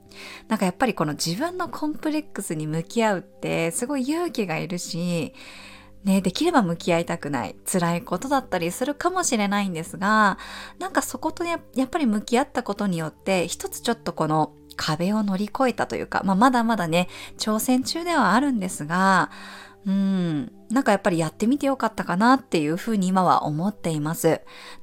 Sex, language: female, Japanese